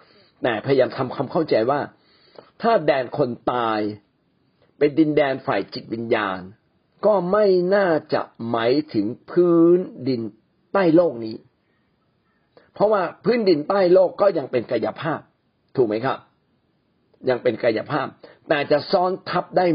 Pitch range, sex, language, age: 125-175 Hz, male, Thai, 50-69